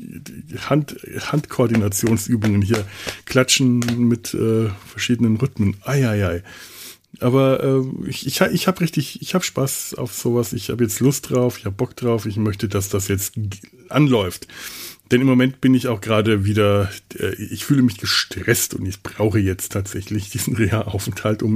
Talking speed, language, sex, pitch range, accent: 150 wpm, German, male, 105-135 Hz, German